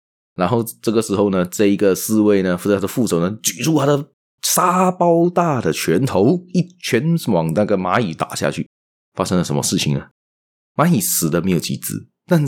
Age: 30-49